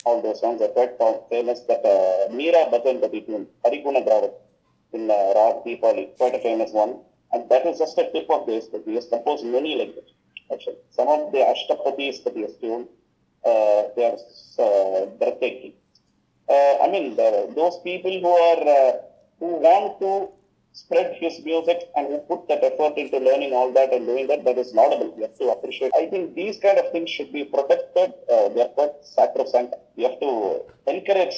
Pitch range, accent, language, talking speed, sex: 125-205 Hz, Indian, English, 195 wpm, male